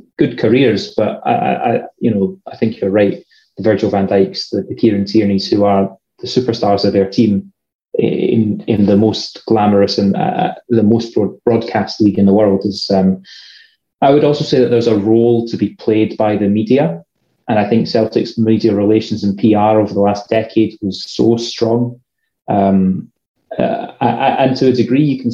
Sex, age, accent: male, 30-49, British